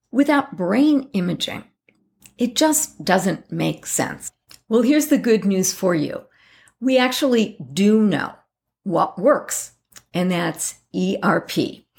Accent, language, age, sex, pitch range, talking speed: American, English, 50-69, female, 180-245 Hz, 120 wpm